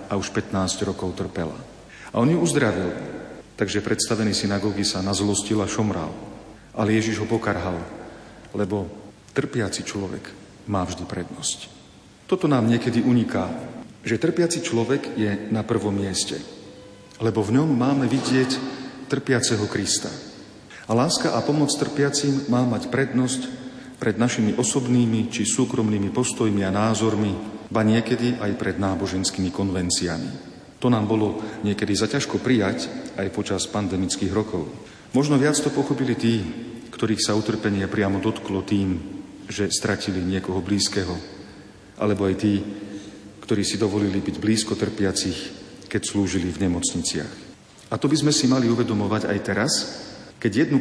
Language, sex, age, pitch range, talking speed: Slovak, male, 40-59, 100-120 Hz, 135 wpm